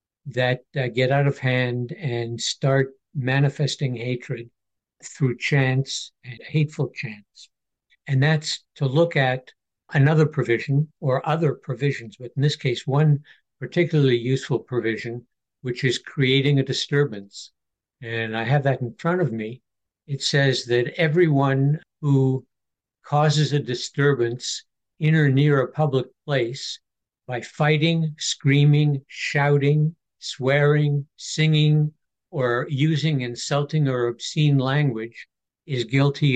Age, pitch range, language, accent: 60-79, 125-150 Hz, English, American